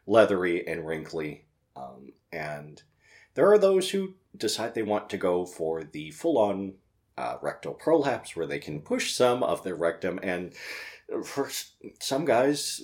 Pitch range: 85-115 Hz